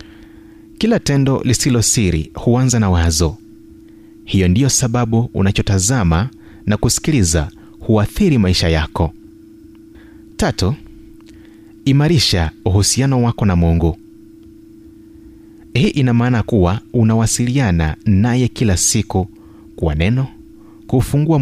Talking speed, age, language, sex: 95 wpm, 30-49, Swahili, male